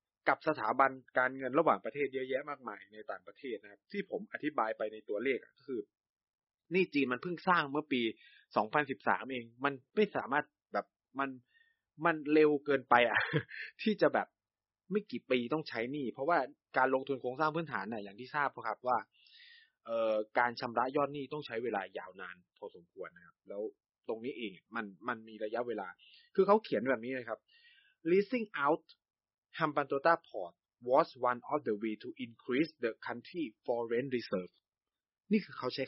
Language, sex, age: Thai, male, 20-39